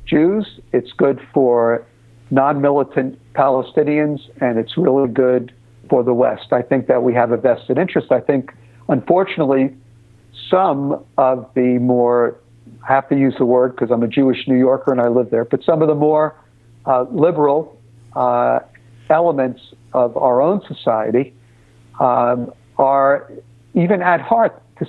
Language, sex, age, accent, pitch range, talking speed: English, male, 60-79, American, 120-145 Hz, 150 wpm